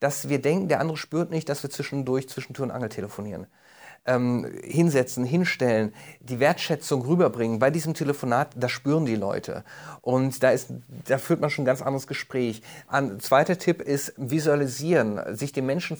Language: German